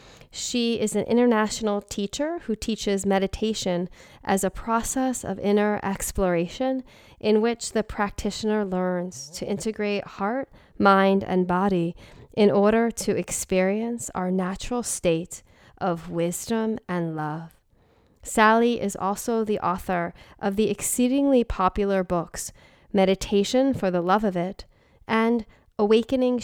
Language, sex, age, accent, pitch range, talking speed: English, female, 30-49, American, 180-220 Hz, 125 wpm